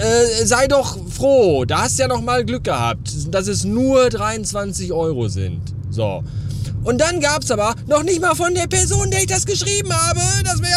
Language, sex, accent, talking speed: German, male, German, 205 wpm